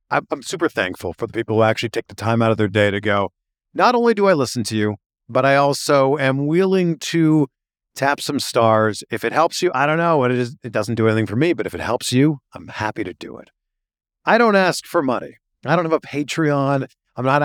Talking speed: 245 wpm